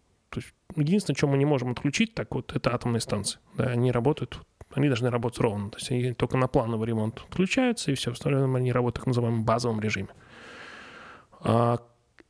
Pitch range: 115-145 Hz